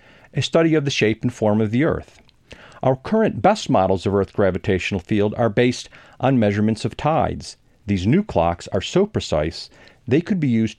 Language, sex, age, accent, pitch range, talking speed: English, male, 40-59, American, 105-150 Hz, 190 wpm